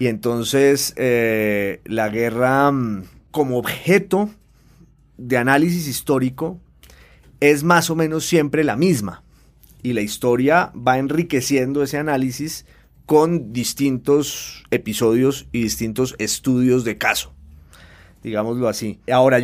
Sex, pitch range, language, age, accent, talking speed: male, 120-150 Hz, Spanish, 30-49, Colombian, 110 wpm